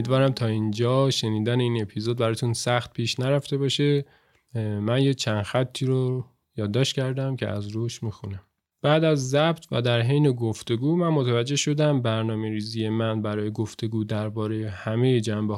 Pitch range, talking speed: 110-140 Hz, 155 wpm